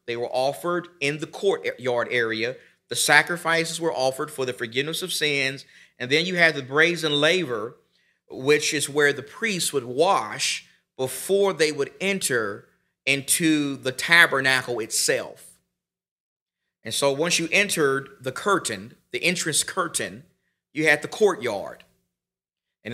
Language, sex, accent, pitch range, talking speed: English, male, American, 125-155 Hz, 140 wpm